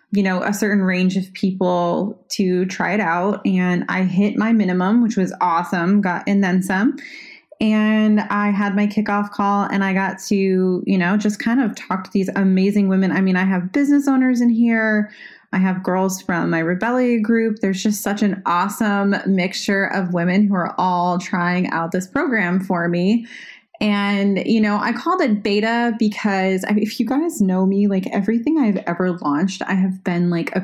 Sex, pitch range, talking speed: female, 185-225 Hz, 190 wpm